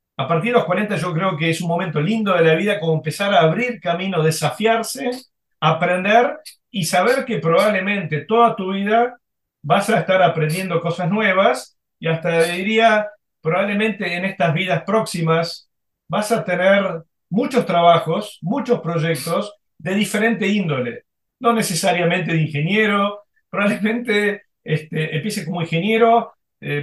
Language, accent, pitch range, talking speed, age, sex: Spanish, Argentinian, 160-210 Hz, 140 wpm, 40-59, male